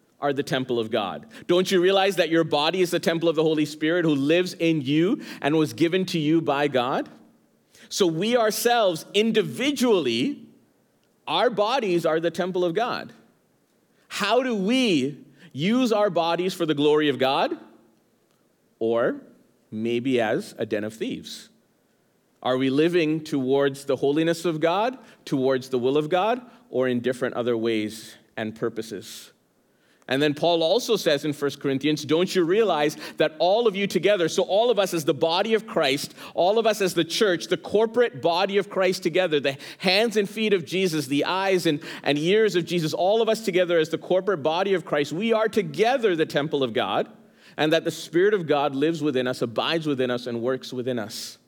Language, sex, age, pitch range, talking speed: English, male, 40-59, 140-190 Hz, 185 wpm